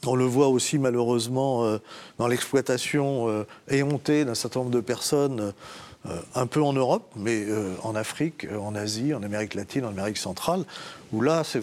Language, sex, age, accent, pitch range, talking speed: French, male, 40-59, French, 120-160 Hz, 175 wpm